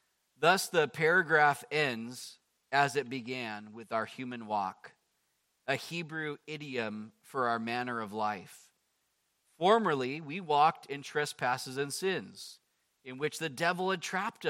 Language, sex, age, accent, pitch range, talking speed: English, male, 40-59, American, 120-155 Hz, 130 wpm